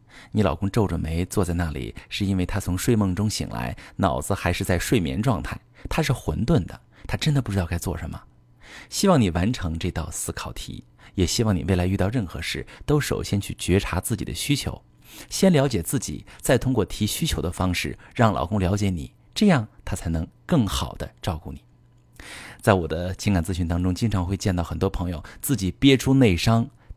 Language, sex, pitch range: Chinese, male, 85-115 Hz